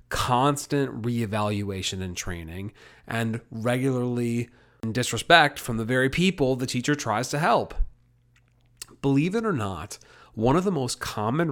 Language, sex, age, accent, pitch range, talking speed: English, male, 30-49, American, 100-125 Hz, 135 wpm